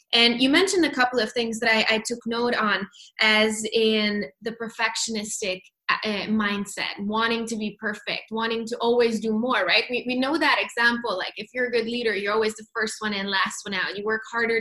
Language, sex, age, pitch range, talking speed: English, female, 10-29, 215-240 Hz, 215 wpm